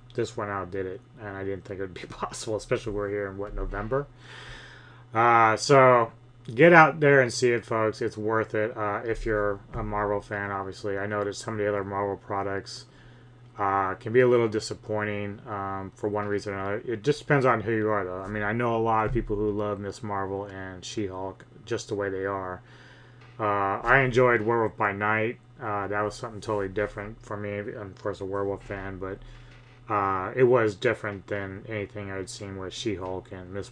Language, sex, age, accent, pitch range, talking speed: English, male, 30-49, American, 100-125 Hz, 215 wpm